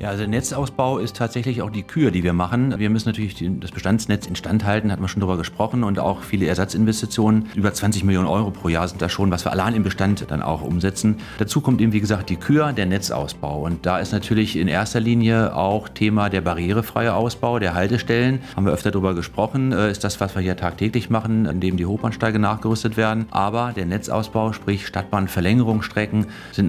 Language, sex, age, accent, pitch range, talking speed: German, male, 40-59, German, 90-110 Hz, 205 wpm